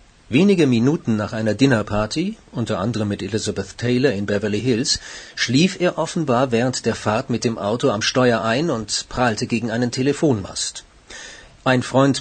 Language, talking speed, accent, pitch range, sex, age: German, 155 wpm, German, 110-130 Hz, male, 40-59